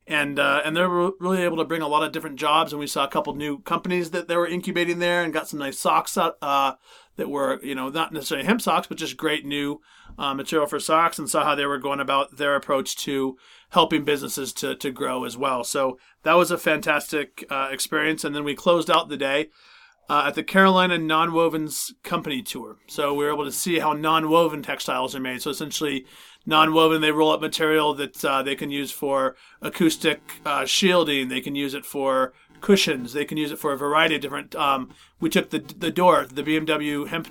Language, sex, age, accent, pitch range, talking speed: English, male, 40-59, American, 145-170 Hz, 220 wpm